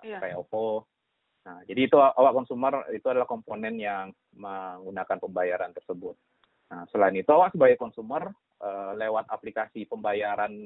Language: Indonesian